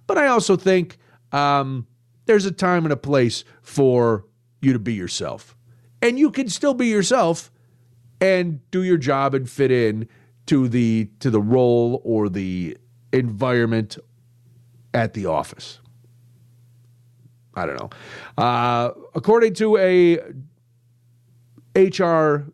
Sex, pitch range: male, 120-190 Hz